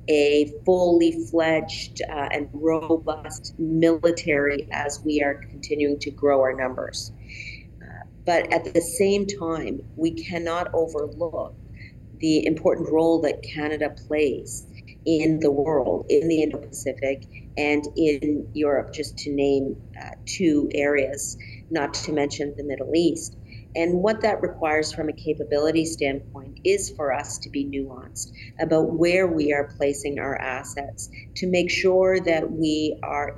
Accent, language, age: American, English, 50-69